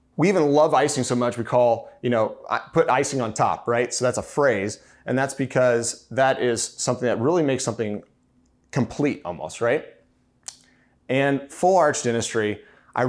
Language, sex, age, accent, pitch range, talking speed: English, male, 30-49, American, 110-135 Hz, 170 wpm